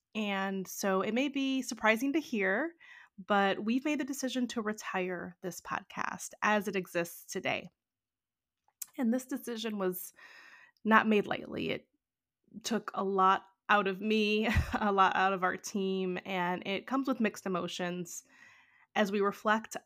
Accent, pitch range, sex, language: American, 185-220 Hz, female, English